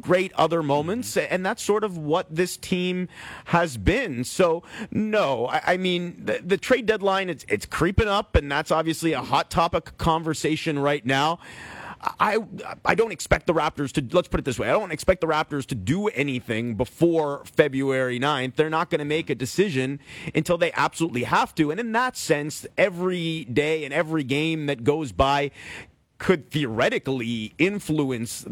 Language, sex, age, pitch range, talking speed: English, male, 30-49, 130-170 Hz, 175 wpm